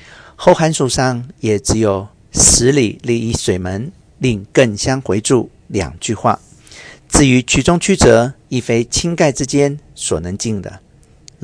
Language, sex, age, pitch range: Chinese, male, 50-69, 105-135 Hz